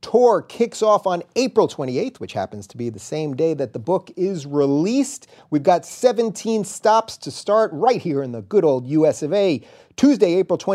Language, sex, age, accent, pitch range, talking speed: English, male, 30-49, American, 155-210 Hz, 195 wpm